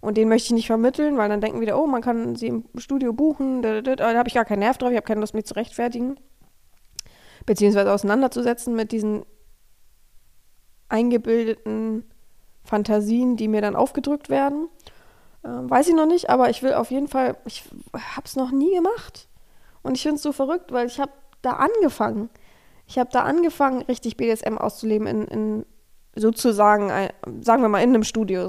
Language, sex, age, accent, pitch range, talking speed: German, female, 20-39, German, 215-255 Hz, 190 wpm